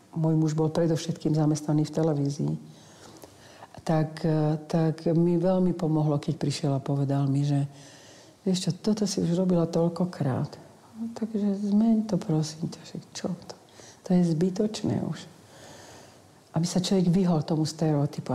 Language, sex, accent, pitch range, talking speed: Czech, female, native, 145-170 Hz, 140 wpm